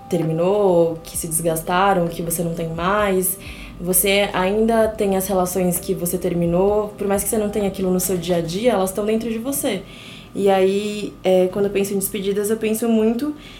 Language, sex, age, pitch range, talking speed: Portuguese, female, 20-39, 180-210 Hz, 195 wpm